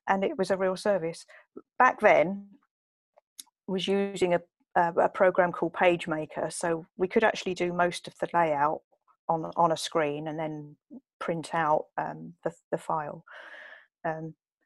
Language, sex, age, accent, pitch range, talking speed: English, female, 40-59, British, 165-200 Hz, 155 wpm